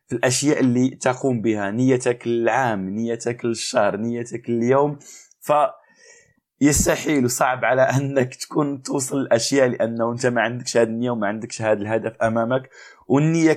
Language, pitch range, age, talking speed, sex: Arabic, 115-135 Hz, 20-39, 135 wpm, male